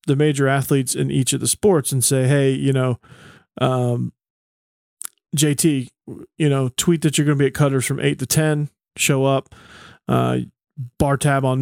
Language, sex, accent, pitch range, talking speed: English, male, American, 125-145 Hz, 180 wpm